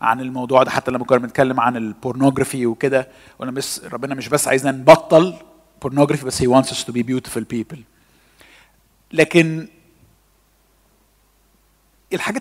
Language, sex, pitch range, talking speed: Arabic, male, 130-165 Hz, 130 wpm